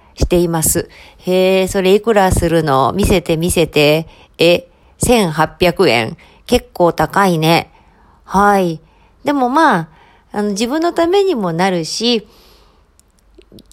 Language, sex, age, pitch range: Japanese, female, 40-59, 175-270 Hz